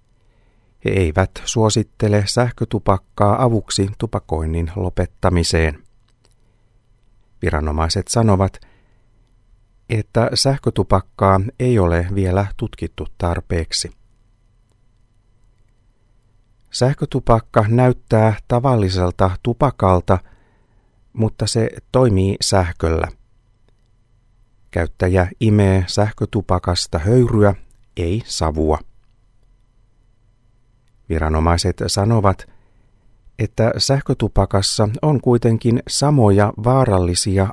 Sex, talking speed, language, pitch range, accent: male, 60 wpm, Finnish, 95-115 Hz, native